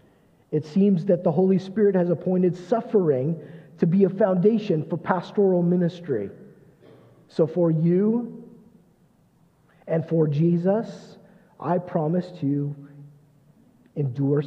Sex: male